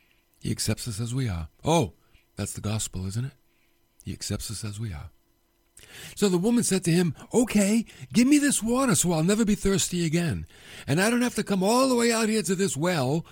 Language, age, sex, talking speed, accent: English, 60-79, male, 220 wpm, American